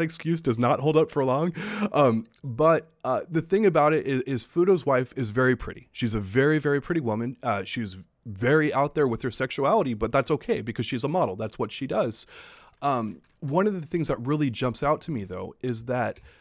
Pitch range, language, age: 120-155 Hz, English, 20-39